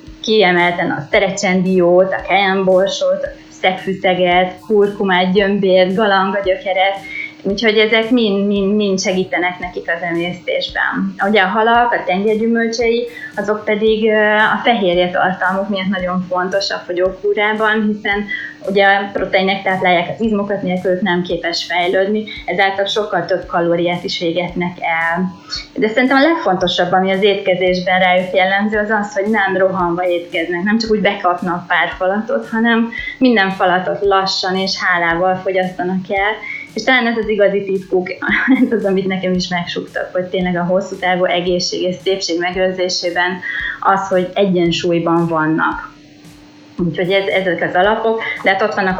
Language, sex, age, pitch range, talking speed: Hungarian, female, 20-39, 180-205 Hz, 140 wpm